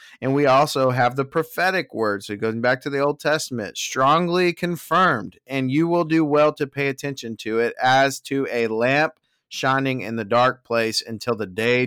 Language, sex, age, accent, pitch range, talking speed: English, male, 30-49, American, 115-150 Hz, 190 wpm